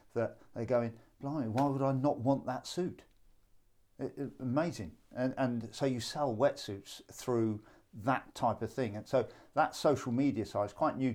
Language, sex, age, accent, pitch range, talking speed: English, male, 50-69, British, 100-125 Hz, 185 wpm